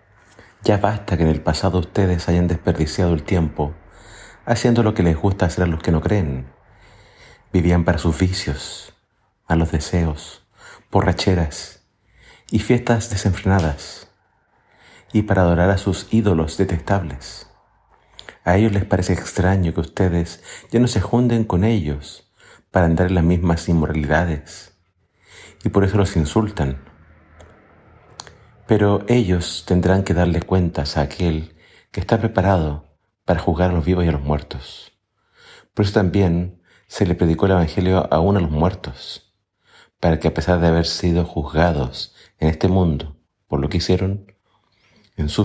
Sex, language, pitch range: male, Spanish, 80-100 Hz